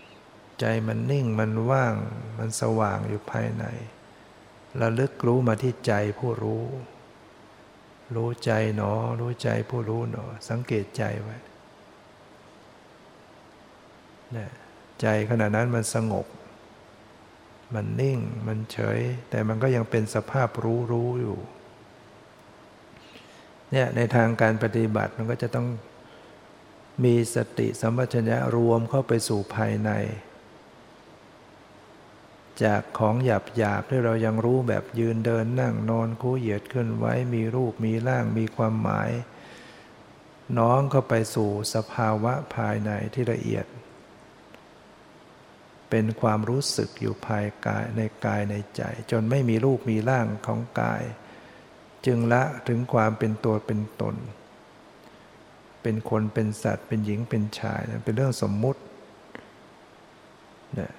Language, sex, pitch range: English, male, 110-120 Hz